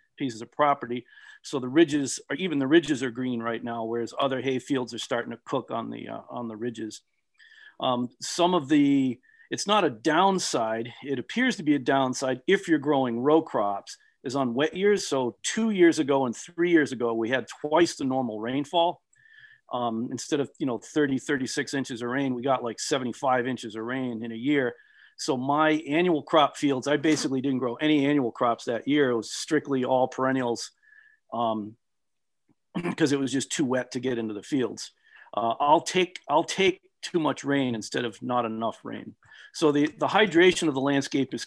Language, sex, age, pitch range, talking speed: English, male, 40-59, 125-155 Hz, 200 wpm